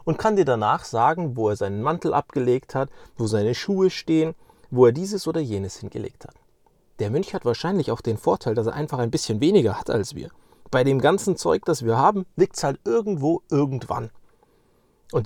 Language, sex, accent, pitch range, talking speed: German, male, German, 120-165 Hz, 200 wpm